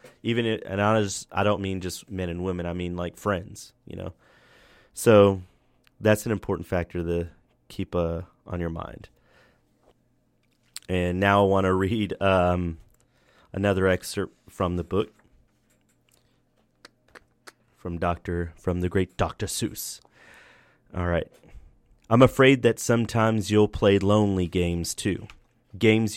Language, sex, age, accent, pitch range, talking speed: English, male, 30-49, American, 90-110 Hz, 130 wpm